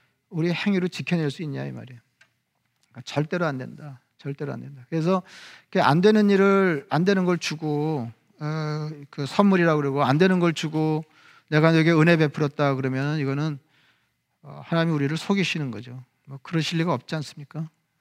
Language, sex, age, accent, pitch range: Korean, male, 40-59, native, 145-175 Hz